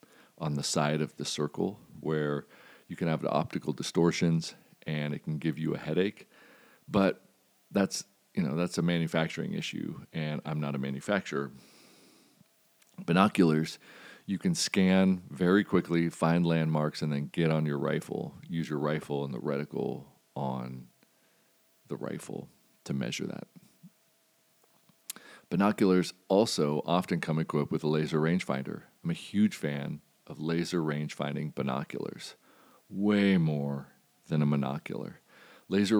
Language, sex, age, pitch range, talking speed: English, male, 40-59, 75-90 Hz, 135 wpm